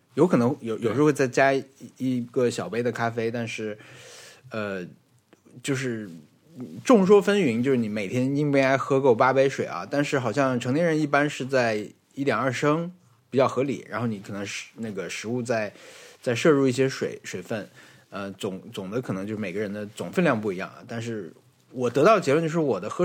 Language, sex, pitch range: Chinese, male, 110-135 Hz